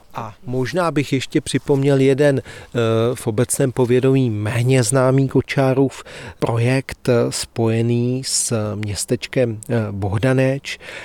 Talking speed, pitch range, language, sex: 90 wpm, 110-125 Hz, Czech, male